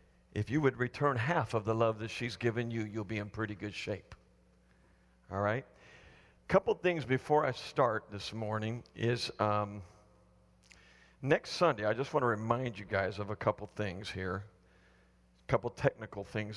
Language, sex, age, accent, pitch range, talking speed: English, male, 50-69, American, 100-125 Hz, 175 wpm